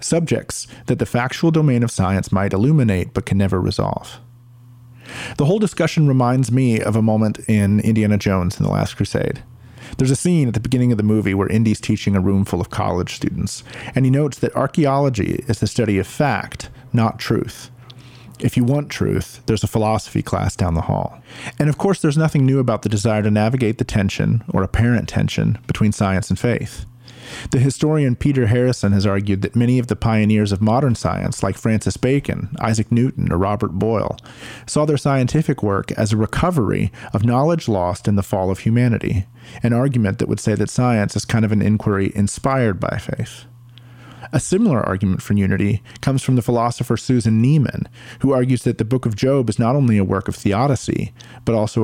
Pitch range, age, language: 105-130 Hz, 40-59, English